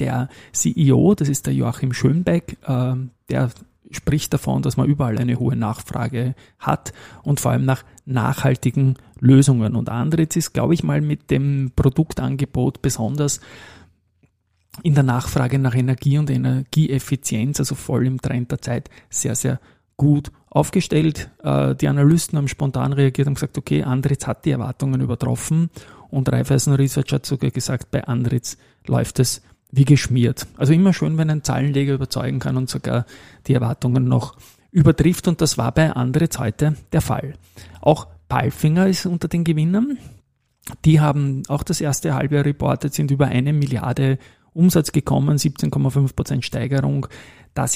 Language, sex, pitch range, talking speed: German, male, 125-145 Hz, 150 wpm